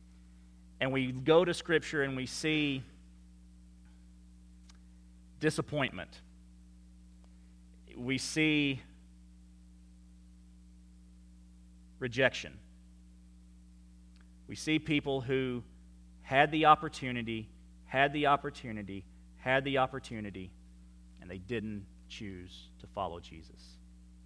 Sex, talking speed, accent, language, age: male, 80 wpm, American, English, 40-59